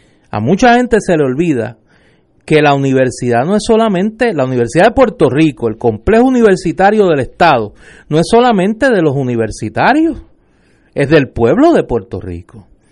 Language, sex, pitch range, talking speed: Spanish, male, 150-225 Hz, 160 wpm